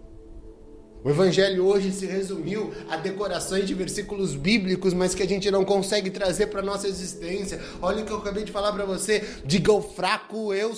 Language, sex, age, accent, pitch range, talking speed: Portuguese, male, 20-39, Brazilian, 190-225 Hz, 190 wpm